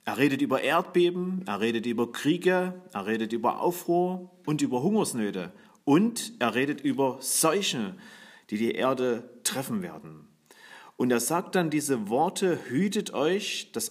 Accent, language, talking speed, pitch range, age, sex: German, German, 145 wpm, 120-185 Hz, 40-59, male